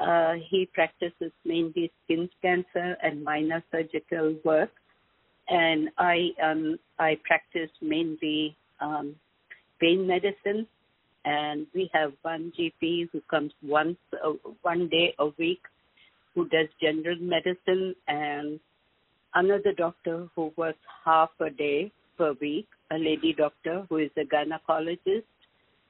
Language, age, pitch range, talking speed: English, 60-79, 155-180 Hz, 125 wpm